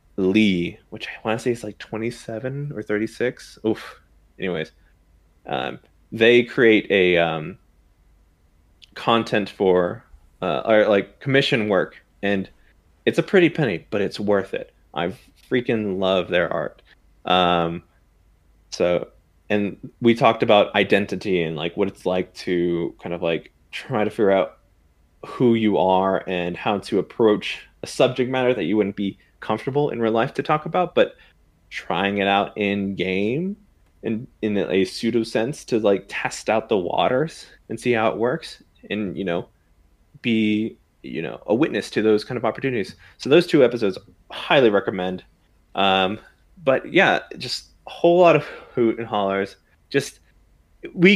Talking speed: 155 wpm